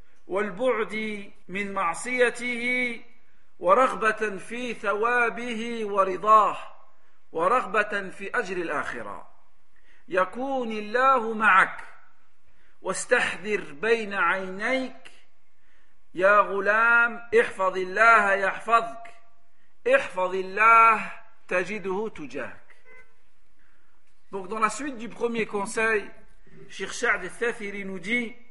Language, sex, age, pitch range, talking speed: French, male, 50-69, 200-245 Hz, 35 wpm